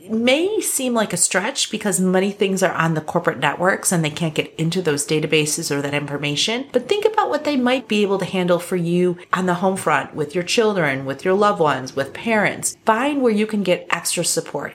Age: 30-49